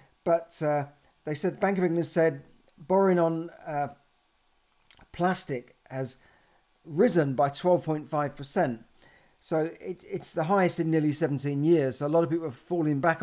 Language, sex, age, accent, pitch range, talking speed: English, male, 50-69, British, 135-165 Hz, 150 wpm